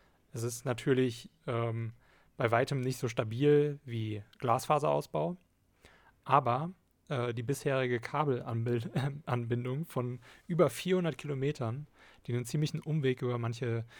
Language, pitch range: German, 110-130 Hz